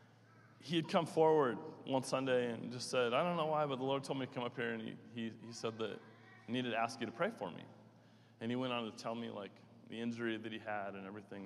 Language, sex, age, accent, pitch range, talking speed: English, male, 30-49, American, 110-140 Hz, 270 wpm